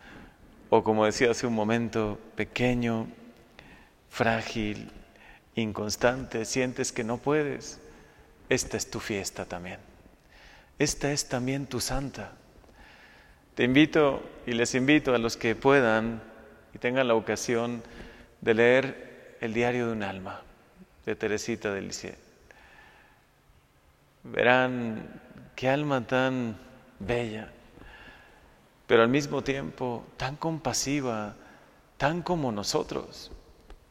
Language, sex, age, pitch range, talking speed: Spanish, male, 40-59, 115-145 Hz, 110 wpm